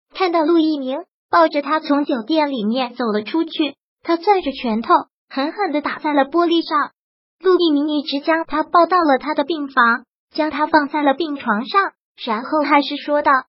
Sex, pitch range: male, 265-330 Hz